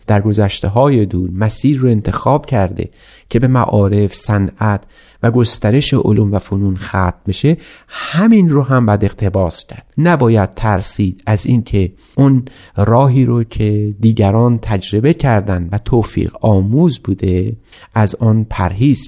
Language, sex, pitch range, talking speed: Persian, male, 95-120 Hz, 130 wpm